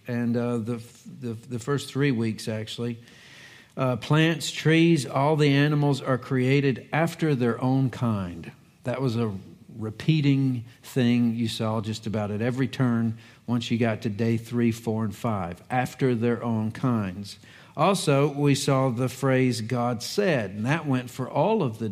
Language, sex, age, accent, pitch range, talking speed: English, male, 50-69, American, 115-140 Hz, 165 wpm